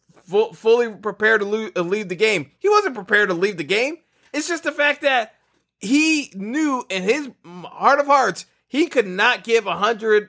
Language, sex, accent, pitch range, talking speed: English, male, American, 185-235 Hz, 180 wpm